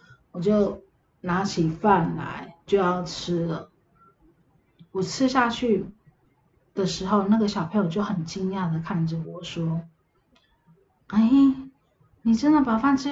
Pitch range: 170-230 Hz